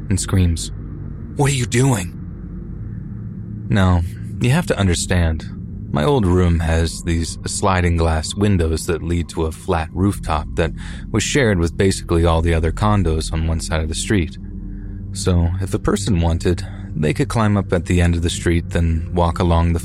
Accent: American